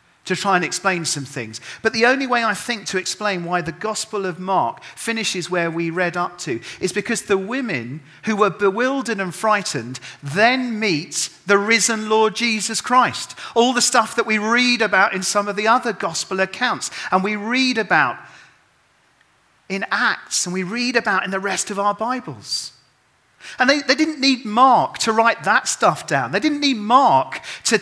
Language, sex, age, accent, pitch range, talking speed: English, male, 40-59, British, 185-250 Hz, 190 wpm